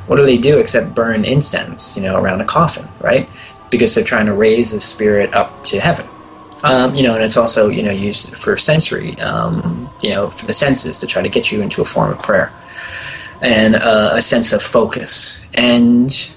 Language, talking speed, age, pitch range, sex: English, 210 wpm, 20-39, 105-130 Hz, male